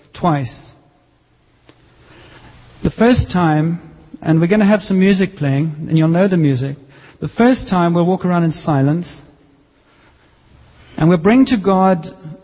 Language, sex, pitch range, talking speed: English, male, 155-195 Hz, 145 wpm